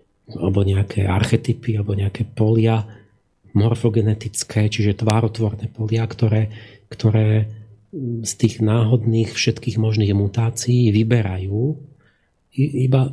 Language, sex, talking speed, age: Slovak, male, 90 wpm, 40-59